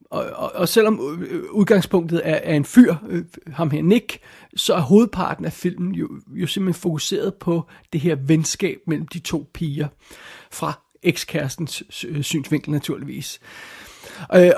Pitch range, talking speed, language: 150-180 Hz, 135 wpm, Danish